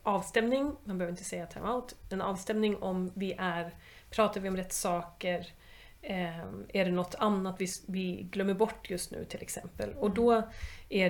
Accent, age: native, 30-49